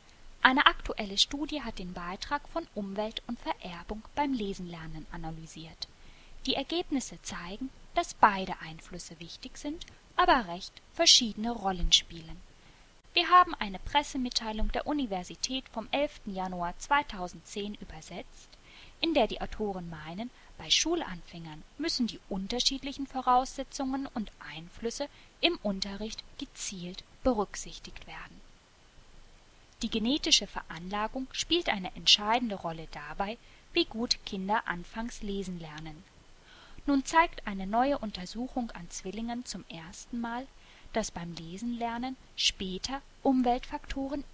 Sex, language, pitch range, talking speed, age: female, German, 185-260 Hz, 115 wpm, 10-29